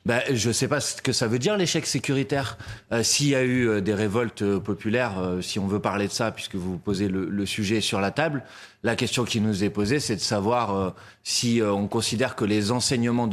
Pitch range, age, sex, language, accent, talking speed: 100-125 Hz, 30-49, male, French, French, 255 wpm